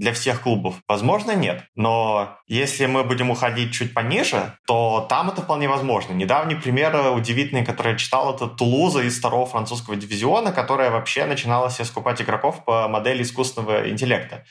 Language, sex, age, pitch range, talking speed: Russian, male, 20-39, 105-125 Hz, 160 wpm